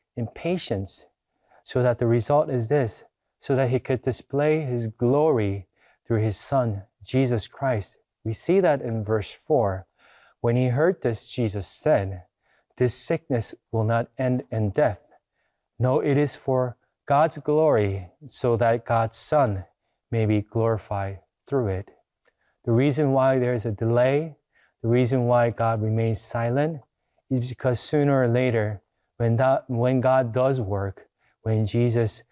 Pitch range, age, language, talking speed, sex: 110-135 Hz, 30-49, English, 150 wpm, male